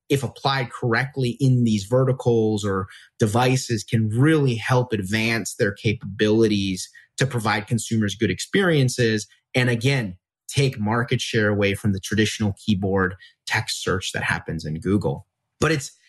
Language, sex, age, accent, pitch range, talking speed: English, male, 30-49, American, 110-150 Hz, 140 wpm